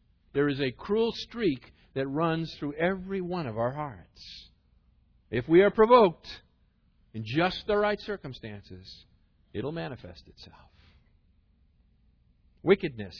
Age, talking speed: 50-69, 120 wpm